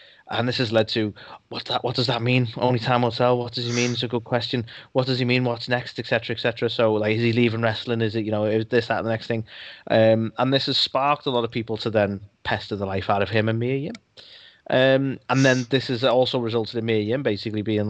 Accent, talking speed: British, 270 wpm